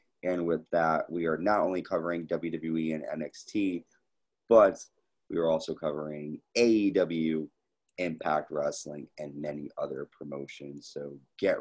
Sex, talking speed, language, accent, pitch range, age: male, 130 wpm, English, American, 75-90 Hz, 30-49